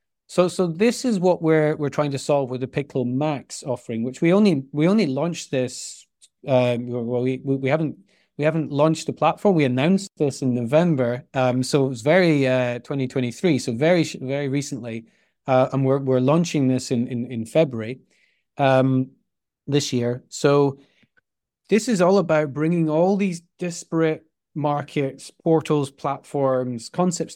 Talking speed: 165 wpm